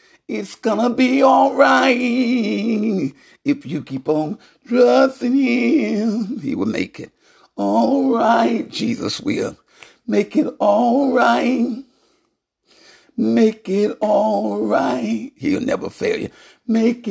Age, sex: 60-79, male